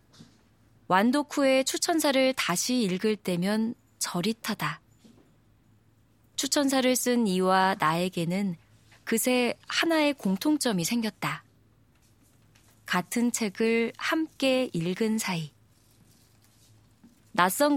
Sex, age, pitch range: female, 20-39, 165-240 Hz